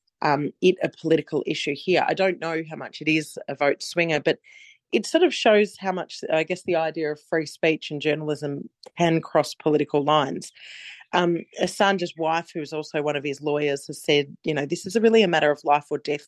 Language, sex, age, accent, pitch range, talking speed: English, female, 30-49, Australian, 145-180 Hz, 220 wpm